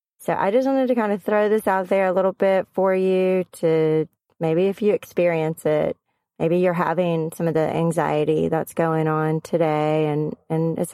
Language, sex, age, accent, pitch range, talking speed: English, female, 30-49, American, 160-180 Hz, 195 wpm